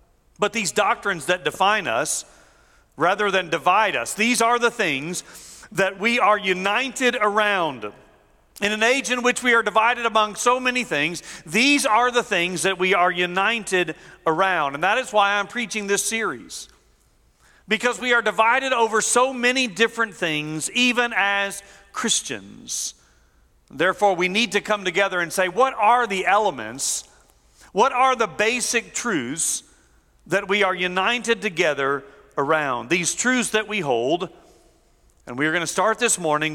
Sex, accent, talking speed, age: male, American, 155 wpm, 50-69